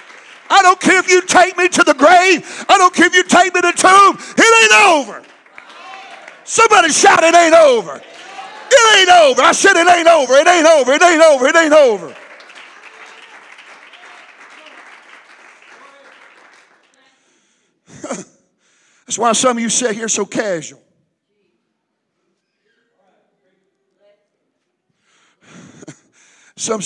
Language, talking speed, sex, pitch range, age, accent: English, 125 wpm, male, 200-330 Hz, 50-69, American